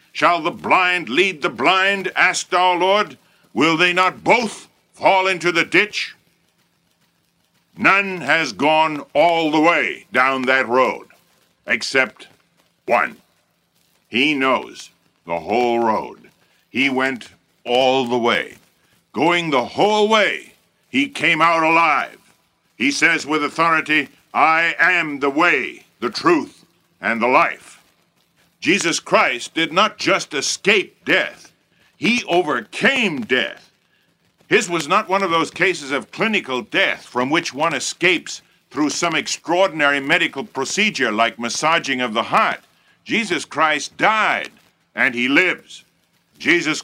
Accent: American